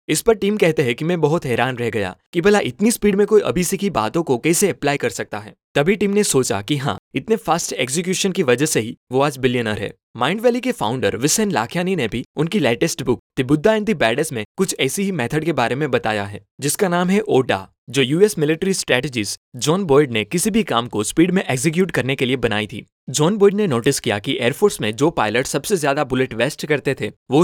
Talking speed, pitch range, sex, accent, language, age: 225 wpm, 125-185 Hz, male, native, Hindi, 20-39